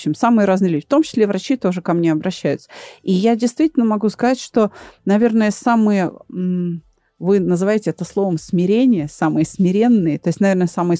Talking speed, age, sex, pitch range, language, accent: 175 wpm, 30-49, female, 170-215 Hz, Russian, native